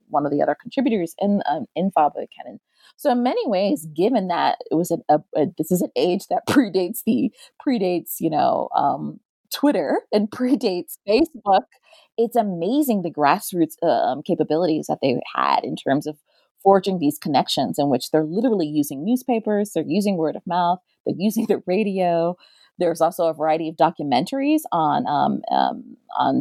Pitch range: 165-220 Hz